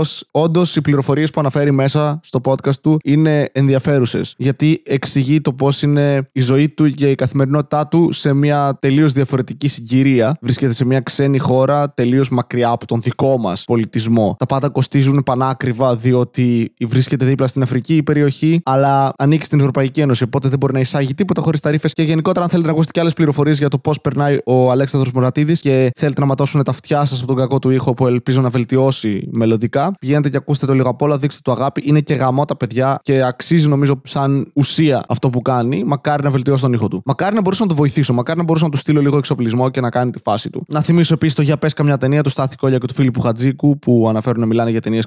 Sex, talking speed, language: male, 215 wpm, Greek